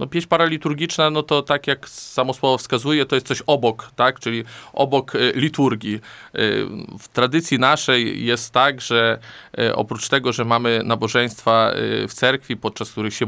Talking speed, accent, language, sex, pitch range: 165 wpm, native, Polish, male, 115-135 Hz